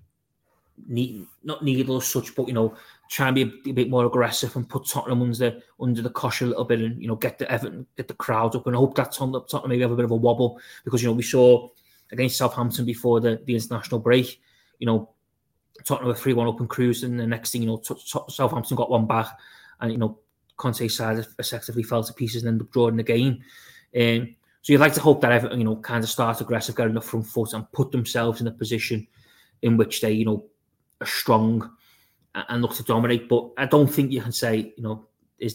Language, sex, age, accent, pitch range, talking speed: English, male, 20-39, British, 110-125 Hz, 240 wpm